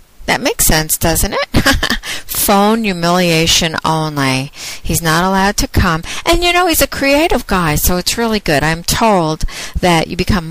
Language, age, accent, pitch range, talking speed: English, 50-69, American, 160-240 Hz, 190 wpm